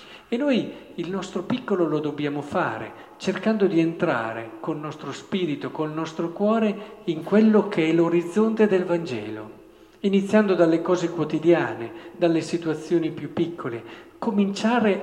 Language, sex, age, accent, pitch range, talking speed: Italian, male, 50-69, native, 155-200 Hz, 140 wpm